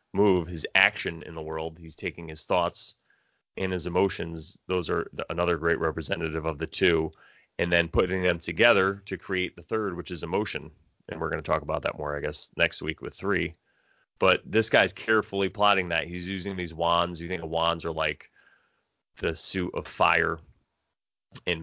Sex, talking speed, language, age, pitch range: male, 190 wpm, English, 30-49, 85-100 Hz